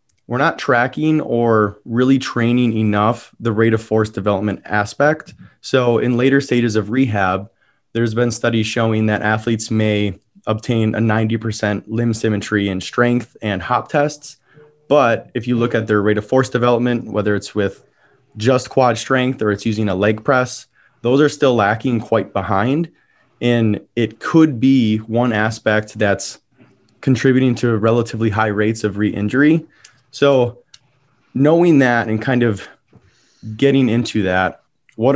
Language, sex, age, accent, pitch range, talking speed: English, male, 20-39, American, 105-125 Hz, 150 wpm